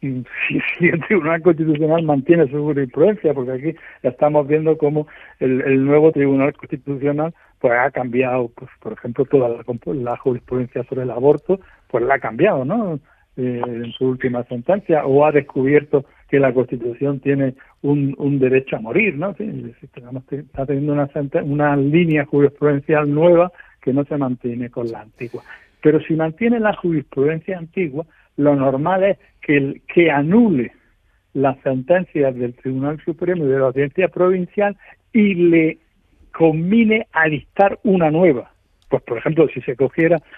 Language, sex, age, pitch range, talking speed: Spanish, male, 60-79, 135-165 Hz, 160 wpm